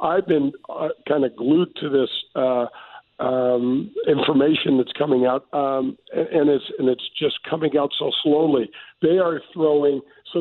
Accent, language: American, English